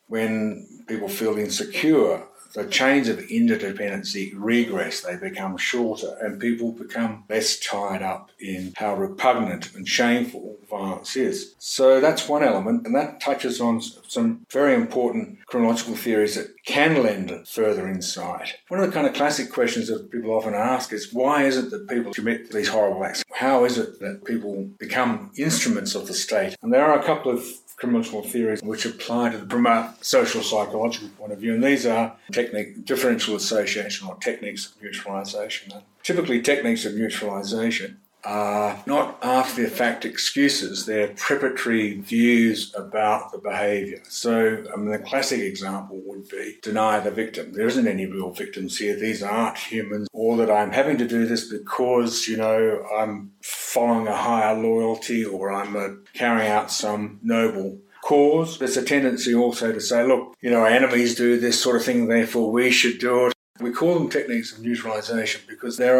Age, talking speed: 50-69, 170 wpm